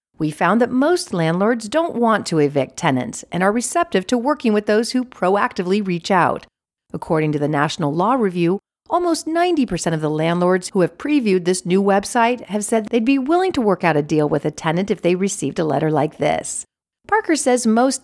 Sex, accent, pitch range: female, American, 165-235 Hz